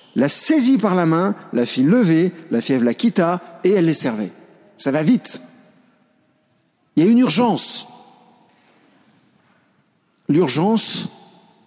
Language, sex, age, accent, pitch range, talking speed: French, male, 50-69, French, 160-210 Hz, 130 wpm